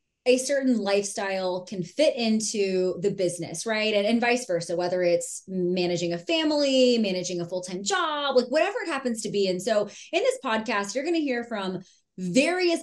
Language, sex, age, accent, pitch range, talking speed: English, female, 20-39, American, 200-275 Hz, 180 wpm